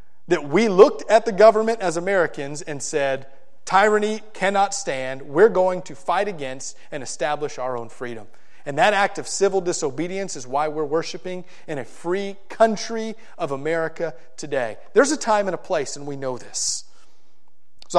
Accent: American